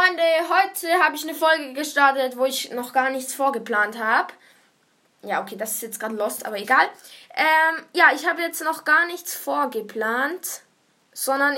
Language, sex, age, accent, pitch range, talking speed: German, female, 10-29, German, 215-290 Hz, 170 wpm